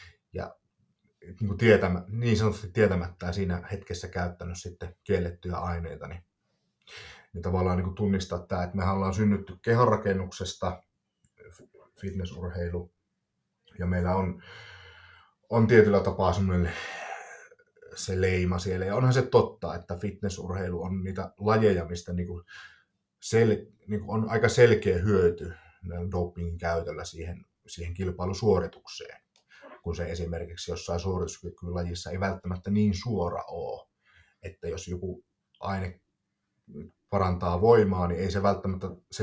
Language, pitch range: Finnish, 85-100 Hz